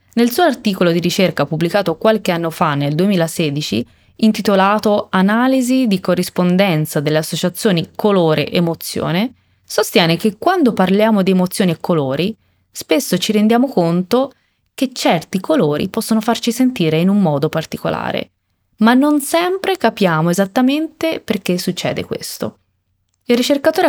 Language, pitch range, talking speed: Italian, 165-235 Hz, 125 wpm